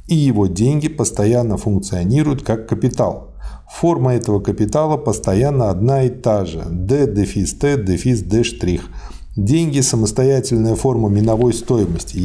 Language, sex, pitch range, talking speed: Russian, male, 100-130 Hz, 125 wpm